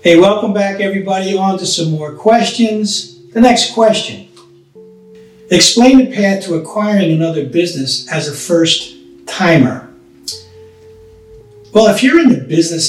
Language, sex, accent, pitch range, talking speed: English, male, American, 140-195 Hz, 135 wpm